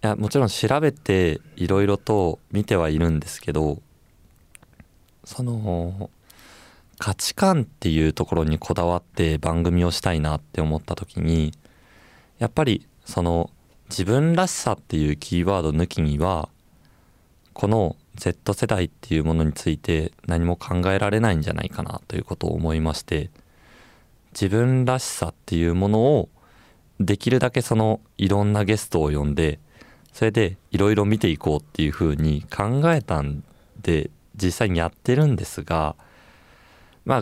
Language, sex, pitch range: Japanese, male, 80-110 Hz